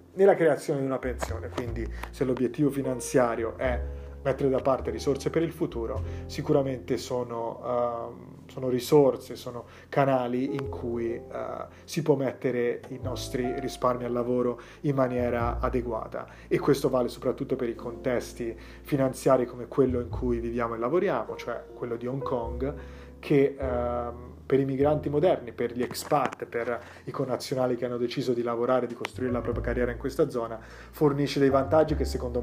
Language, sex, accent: Italian, male, native